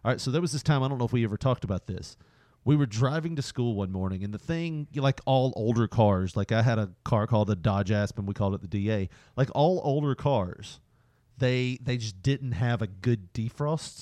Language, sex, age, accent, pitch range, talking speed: English, male, 40-59, American, 110-140 Hz, 240 wpm